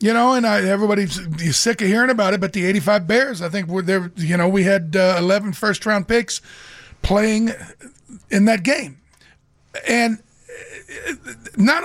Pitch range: 190-230 Hz